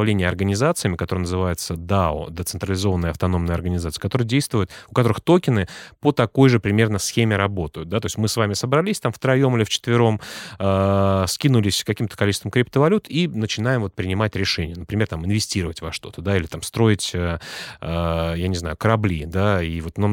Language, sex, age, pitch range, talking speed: Russian, male, 30-49, 95-120 Hz, 175 wpm